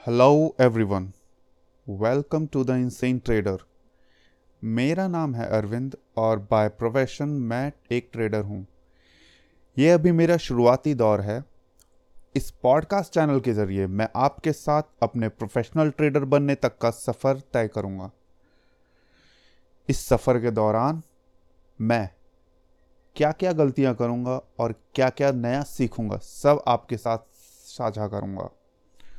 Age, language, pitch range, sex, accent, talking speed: 30-49, Hindi, 100-135 Hz, male, native, 125 wpm